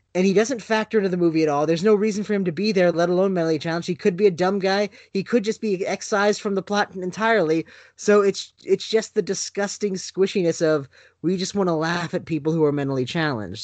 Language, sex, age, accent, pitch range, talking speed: English, male, 20-39, American, 155-205 Hz, 240 wpm